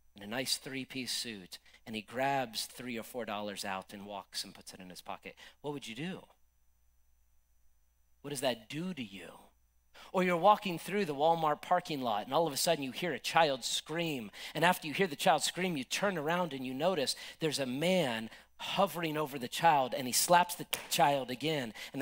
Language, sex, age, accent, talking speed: English, male, 40-59, American, 205 wpm